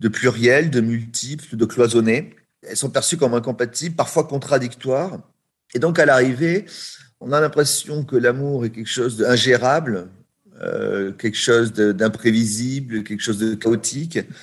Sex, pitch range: male, 110-150 Hz